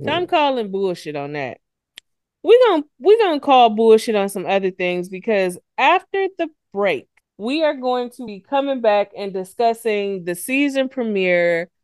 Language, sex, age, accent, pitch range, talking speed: English, female, 20-39, American, 175-250 Hz, 155 wpm